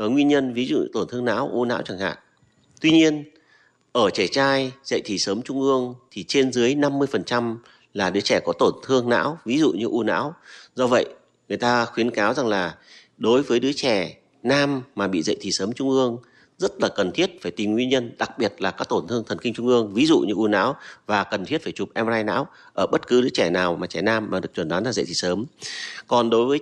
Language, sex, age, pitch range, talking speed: Vietnamese, male, 30-49, 105-130 Hz, 245 wpm